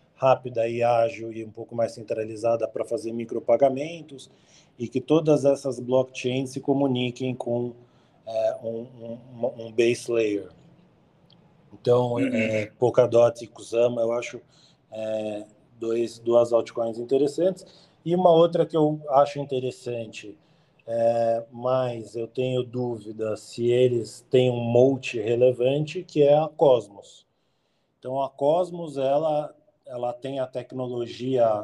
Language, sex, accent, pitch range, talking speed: Portuguese, male, Brazilian, 115-135 Hz, 125 wpm